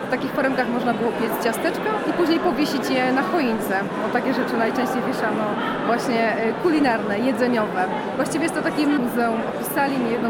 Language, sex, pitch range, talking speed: Polish, female, 235-275 Hz, 170 wpm